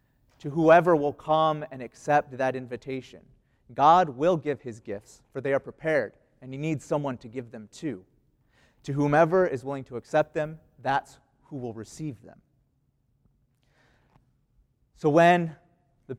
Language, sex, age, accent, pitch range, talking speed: English, male, 30-49, American, 130-155 Hz, 150 wpm